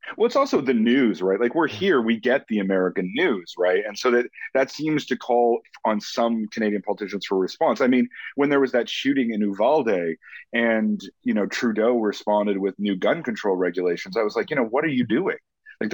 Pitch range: 100-130 Hz